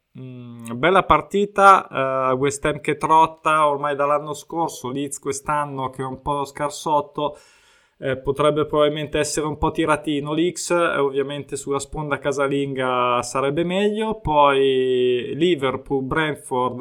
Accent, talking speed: native, 125 wpm